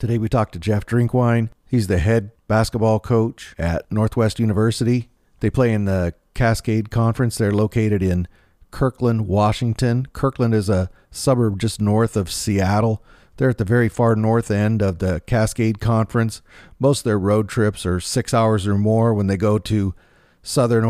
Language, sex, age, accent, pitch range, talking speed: English, male, 40-59, American, 100-115 Hz, 170 wpm